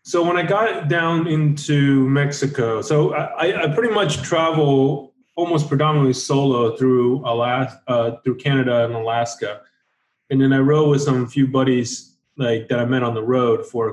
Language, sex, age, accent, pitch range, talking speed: English, male, 20-39, American, 115-145 Hz, 170 wpm